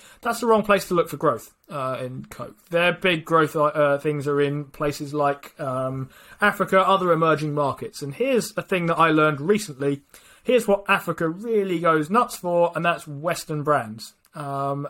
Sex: male